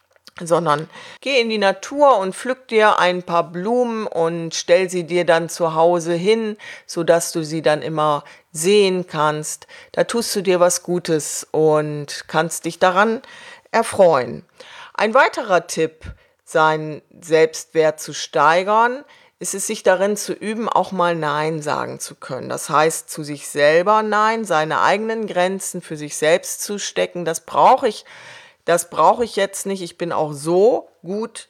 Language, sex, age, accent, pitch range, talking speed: German, female, 40-59, German, 160-200 Hz, 160 wpm